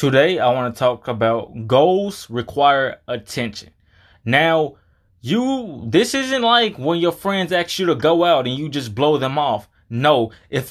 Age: 20-39